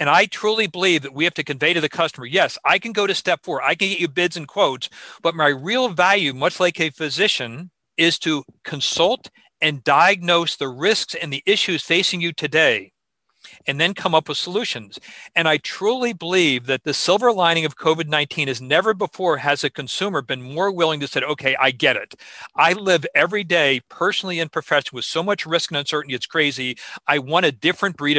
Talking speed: 210 wpm